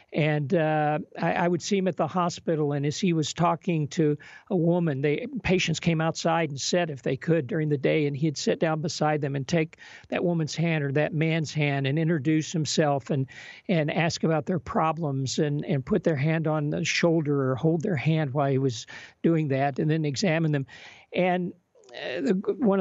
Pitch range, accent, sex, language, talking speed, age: 145-175 Hz, American, male, English, 200 wpm, 50-69